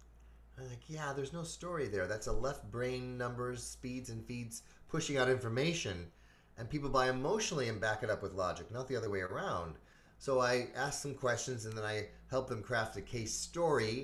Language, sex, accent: English, male, American